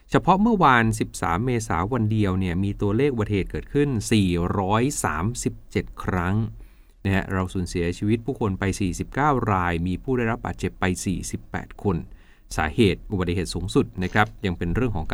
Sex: male